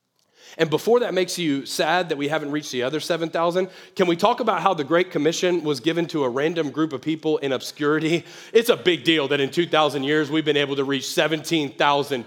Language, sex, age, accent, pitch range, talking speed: English, male, 30-49, American, 135-175 Hz, 220 wpm